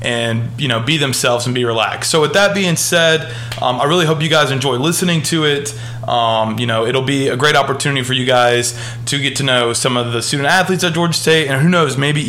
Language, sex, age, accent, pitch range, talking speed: English, male, 20-39, American, 120-155 Hz, 245 wpm